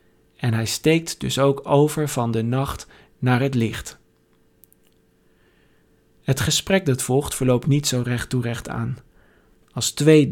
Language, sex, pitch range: Dutch, male, 125-150 Hz